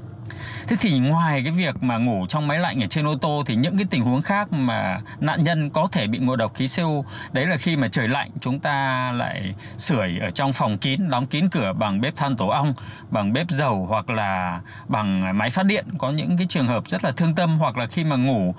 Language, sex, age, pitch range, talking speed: Vietnamese, male, 20-39, 115-165 Hz, 240 wpm